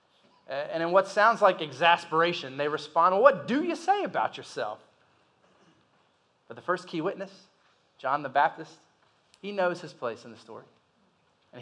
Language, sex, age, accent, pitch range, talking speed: English, male, 30-49, American, 150-205 Hz, 155 wpm